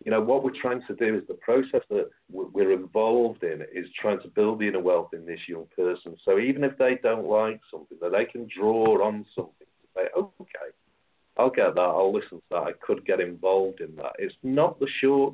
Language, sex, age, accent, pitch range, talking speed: English, male, 50-69, British, 95-145 Hz, 225 wpm